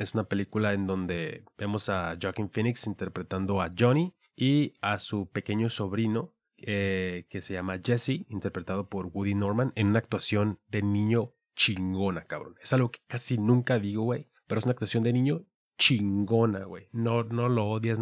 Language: Spanish